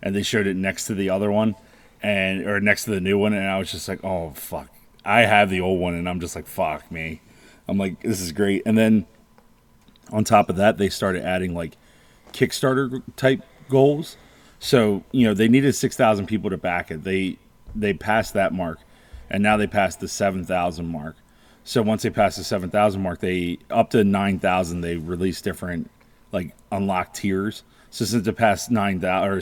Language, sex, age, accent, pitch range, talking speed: English, male, 30-49, American, 90-105 Hz, 200 wpm